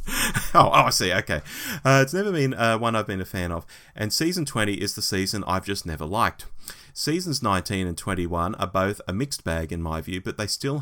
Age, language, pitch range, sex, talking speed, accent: 30-49, English, 90-125 Hz, male, 225 wpm, Australian